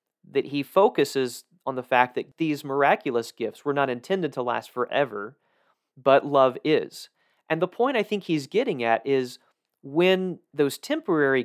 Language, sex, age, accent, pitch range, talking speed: English, male, 30-49, American, 125-160 Hz, 160 wpm